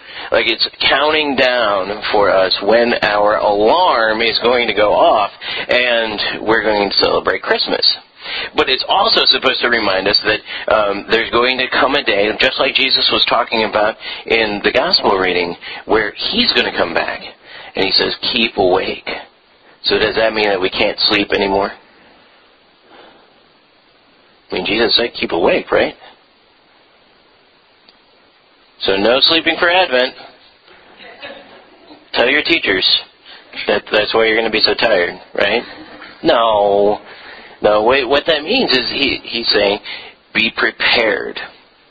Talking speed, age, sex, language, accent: 145 wpm, 40-59, male, English, American